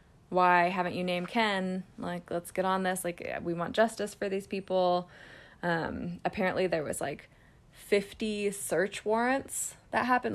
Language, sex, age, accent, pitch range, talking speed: English, female, 20-39, American, 175-205 Hz, 155 wpm